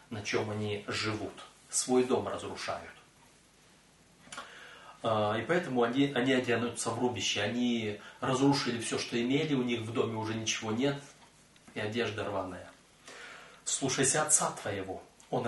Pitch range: 120-155 Hz